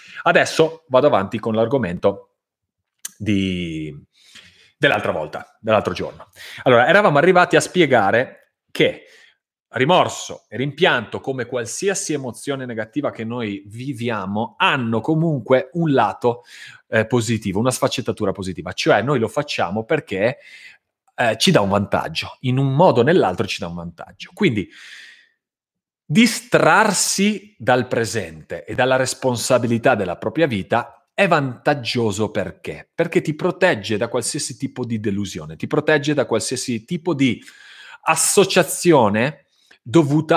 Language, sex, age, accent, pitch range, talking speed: Italian, male, 30-49, native, 110-155 Hz, 120 wpm